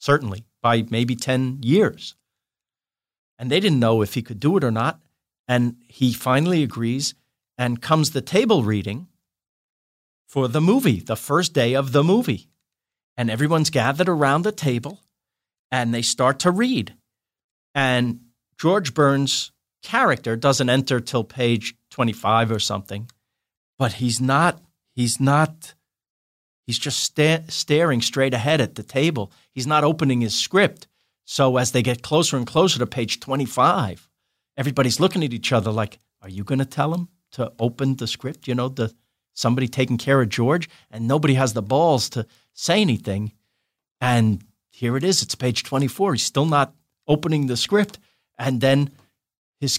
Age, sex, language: 40-59, male, English